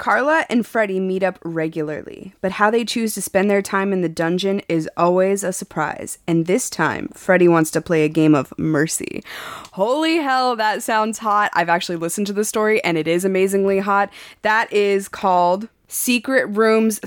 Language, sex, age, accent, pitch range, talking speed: English, female, 20-39, American, 175-215 Hz, 185 wpm